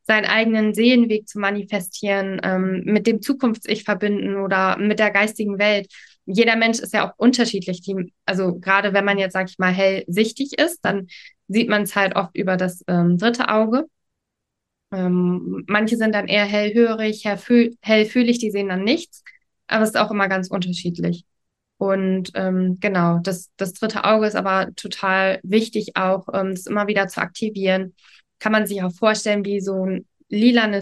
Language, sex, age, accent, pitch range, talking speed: German, female, 20-39, German, 195-220 Hz, 170 wpm